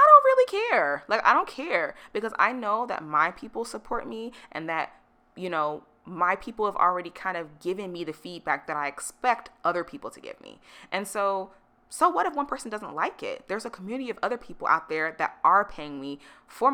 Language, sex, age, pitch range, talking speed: English, female, 20-39, 155-230 Hz, 210 wpm